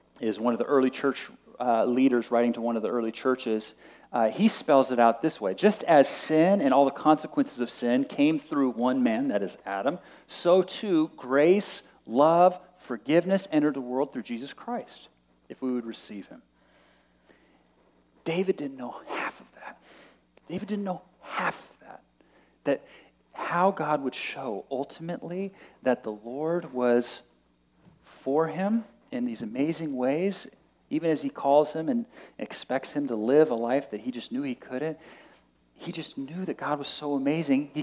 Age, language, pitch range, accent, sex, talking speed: 40-59, English, 120-180 Hz, American, male, 175 wpm